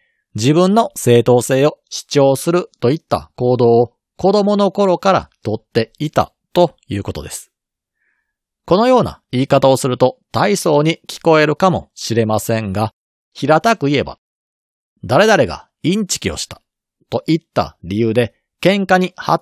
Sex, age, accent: male, 40-59, native